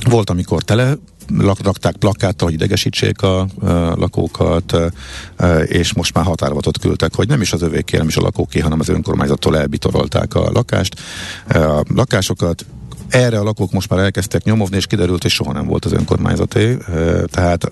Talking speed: 175 wpm